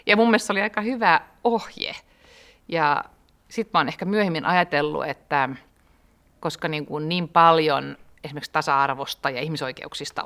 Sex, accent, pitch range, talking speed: female, native, 145-175 Hz, 130 wpm